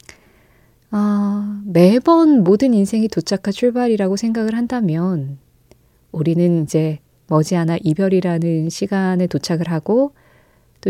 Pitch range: 165-225 Hz